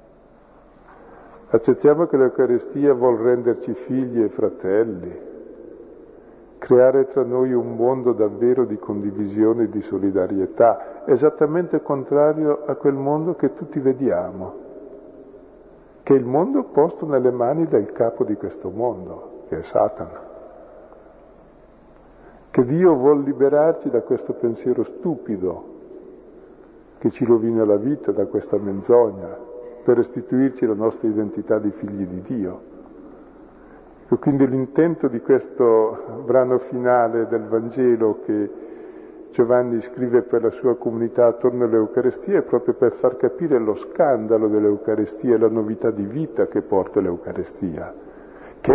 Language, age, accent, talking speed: Italian, 50-69, native, 125 wpm